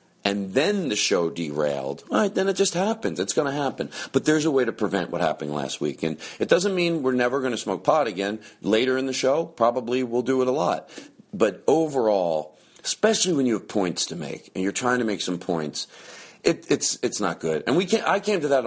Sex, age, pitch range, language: male, 40-59, 85-125 Hz, English